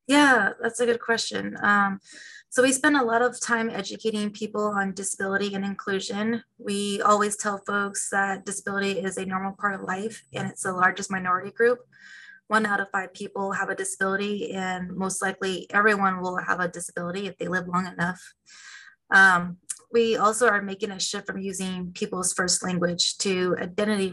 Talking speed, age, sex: 180 wpm, 20-39, female